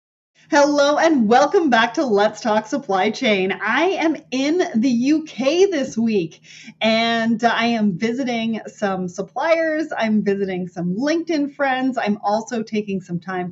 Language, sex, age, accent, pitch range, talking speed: English, female, 30-49, American, 190-255 Hz, 140 wpm